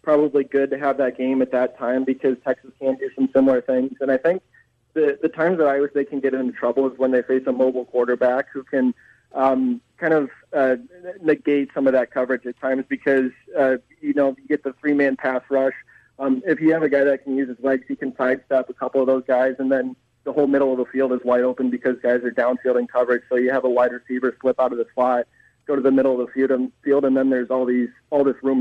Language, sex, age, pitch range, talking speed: English, male, 20-39, 125-135 Hz, 260 wpm